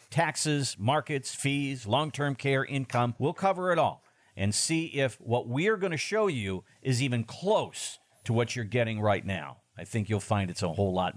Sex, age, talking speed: male, 50-69, 195 wpm